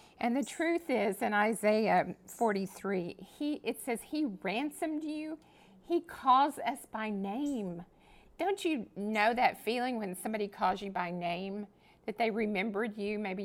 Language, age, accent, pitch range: English, 50-69, American, 190-240 Hz